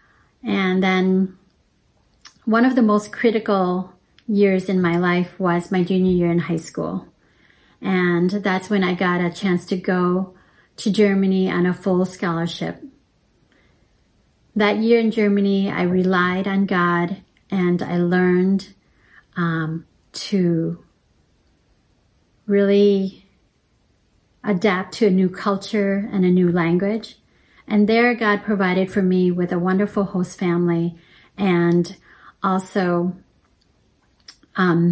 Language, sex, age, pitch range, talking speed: English, female, 40-59, 180-205 Hz, 120 wpm